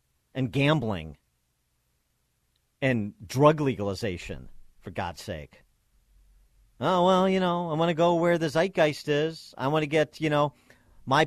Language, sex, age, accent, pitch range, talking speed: English, male, 40-59, American, 100-140 Hz, 145 wpm